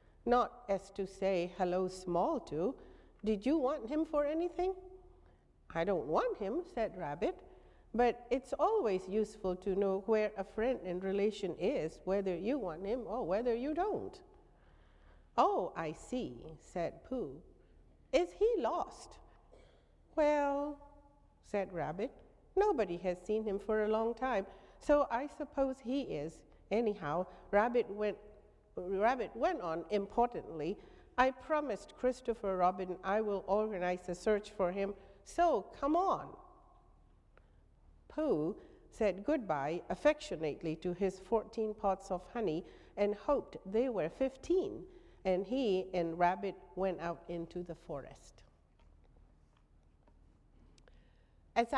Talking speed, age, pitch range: 125 wpm, 60-79, 185-260 Hz